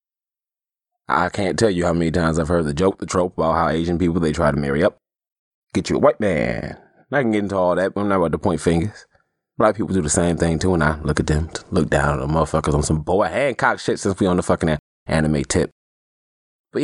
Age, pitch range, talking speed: 20-39, 75-100 Hz, 250 wpm